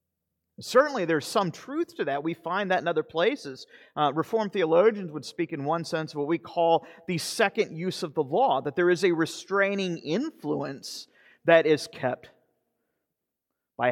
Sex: male